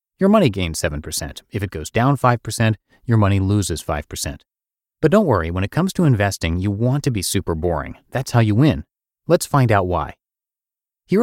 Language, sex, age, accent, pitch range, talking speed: English, male, 30-49, American, 90-125 Hz, 190 wpm